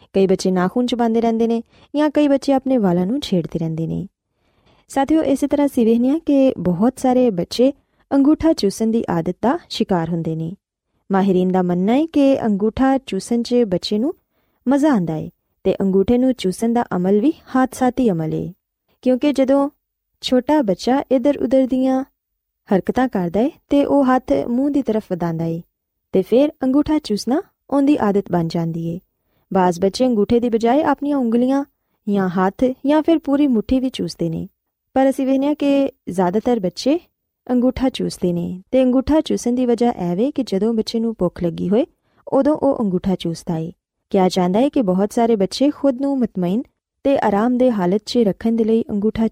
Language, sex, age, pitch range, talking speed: Punjabi, female, 20-39, 190-265 Hz, 175 wpm